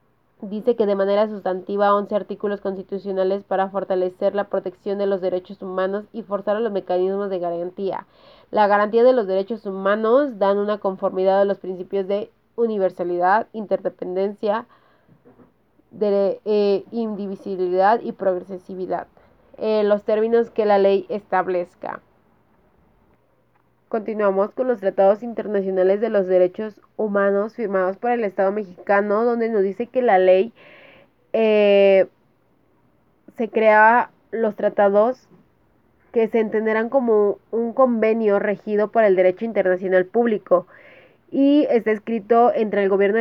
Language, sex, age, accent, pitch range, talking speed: Spanish, female, 30-49, Mexican, 190-220 Hz, 125 wpm